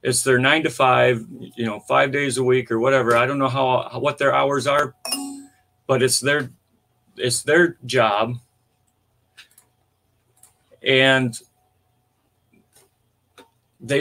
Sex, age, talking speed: male, 40-59, 125 wpm